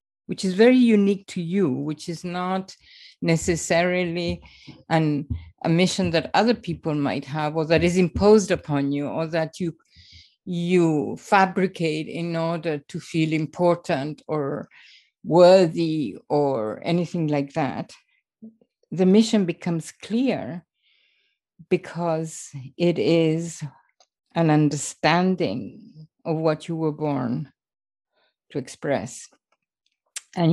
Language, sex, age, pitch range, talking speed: English, female, 50-69, 155-180 Hz, 110 wpm